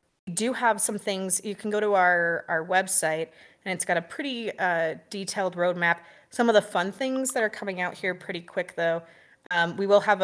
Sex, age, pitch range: female, 20-39, 170-200 Hz